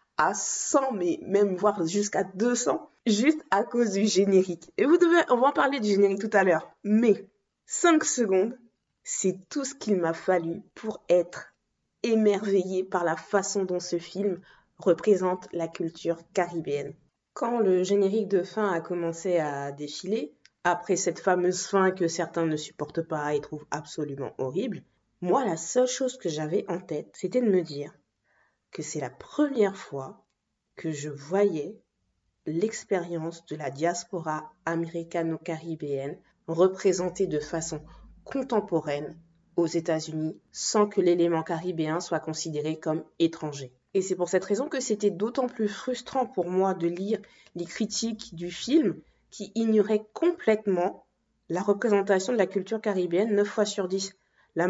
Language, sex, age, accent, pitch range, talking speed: French, female, 20-39, French, 165-210 Hz, 150 wpm